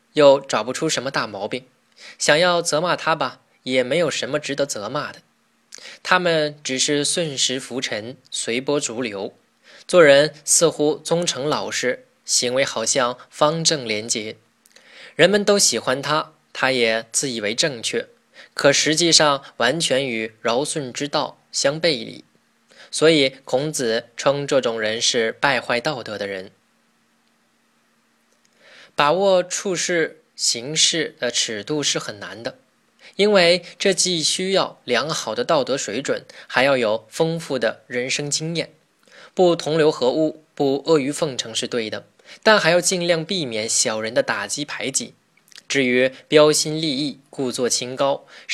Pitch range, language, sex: 125-165 Hz, Chinese, male